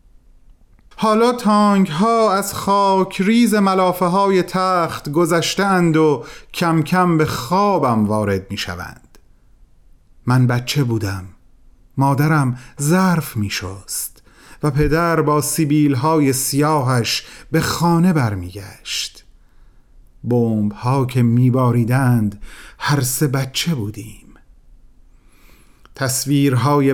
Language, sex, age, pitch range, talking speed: Persian, male, 40-59, 115-175 Hz, 100 wpm